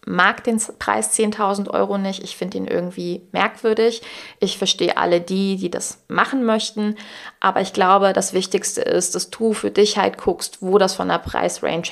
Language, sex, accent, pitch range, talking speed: German, female, German, 180-215 Hz, 180 wpm